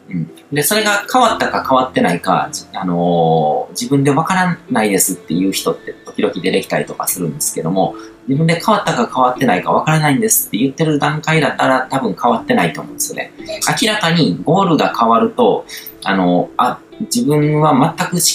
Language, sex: Japanese, male